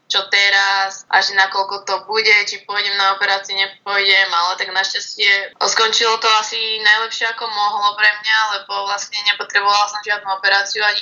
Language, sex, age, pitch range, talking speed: Slovak, female, 20-39, 195-220 Hz, 165 wpm